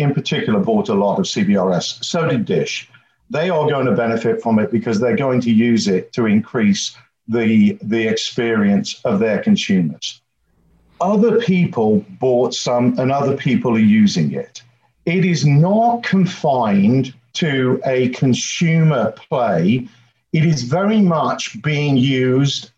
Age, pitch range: 50-69, 120-180 Hz